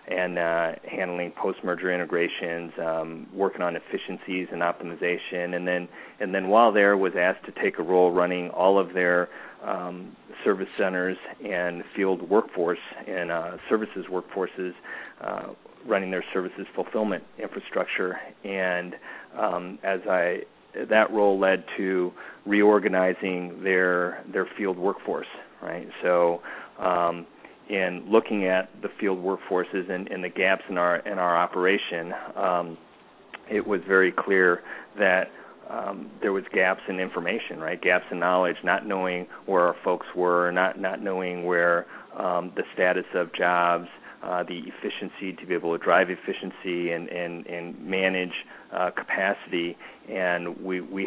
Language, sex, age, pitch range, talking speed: English, male, 40-59, 85-95 Hz, 145 wpm